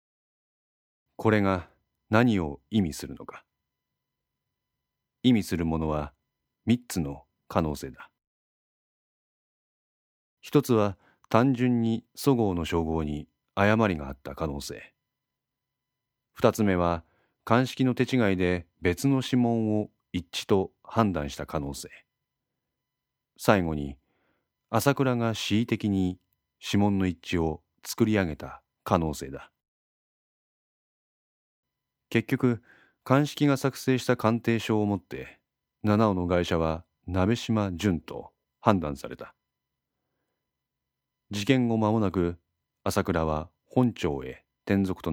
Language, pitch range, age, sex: Japanese, 80-110 Hz, 40-59, male